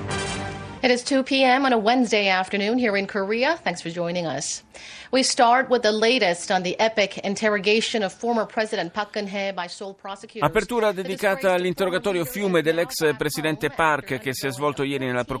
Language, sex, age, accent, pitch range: Italian, male, 30-49, native, 115-170 Hz